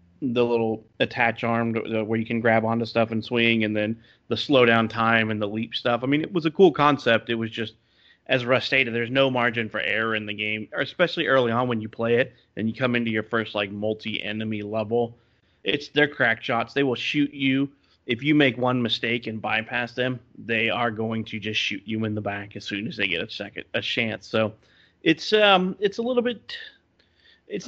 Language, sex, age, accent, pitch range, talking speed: English, male, 30-49, American, 110-130 Hz, 230 wpm